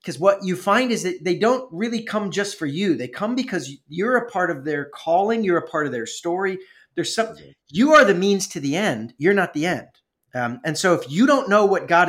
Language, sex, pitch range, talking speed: English, male, 145-185 Hz, 250 wpm